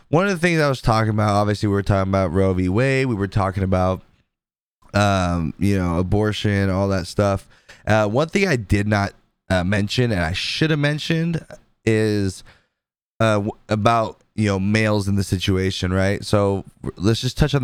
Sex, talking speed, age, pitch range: male, 185 wpm, 20-39, 95-115 Hz